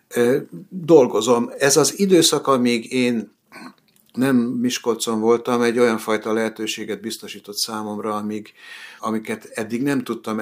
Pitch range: 105-115 Hz